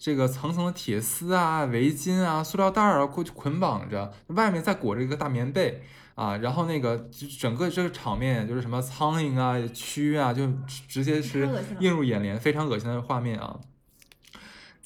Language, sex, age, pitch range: Chinese, male, 20-39, 120-160 Hz